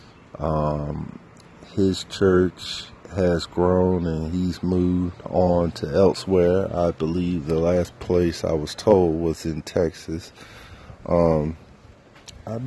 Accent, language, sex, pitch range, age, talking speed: American, English, male, 80-95 Hz, 30-49, 115 wpm